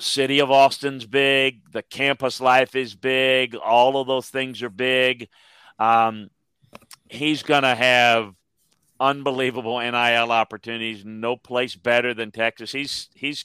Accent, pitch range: American, 115-135 Hz